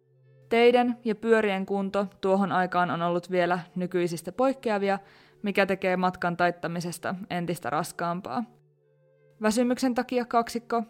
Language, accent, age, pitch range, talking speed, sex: Finnish, native, 20-39, 175-225 Hz, 110 wpm, female